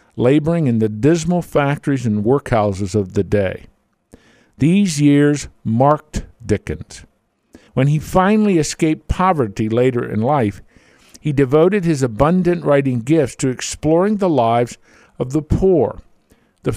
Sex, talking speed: male, 130 wpm